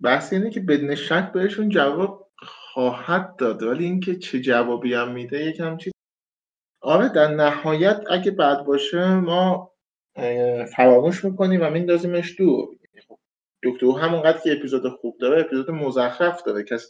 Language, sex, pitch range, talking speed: Persian, male, 125-180 Hz, 130 wpm